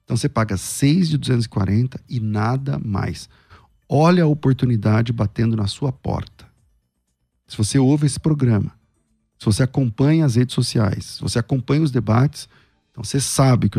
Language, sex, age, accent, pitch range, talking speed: Portuguese, male, 40-59, Brazilian, 110-150 Hz, 160 wpm